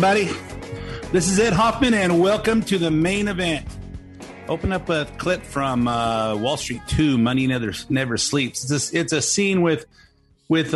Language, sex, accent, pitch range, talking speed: English, male, American, 115-150 Hz, 175 wpm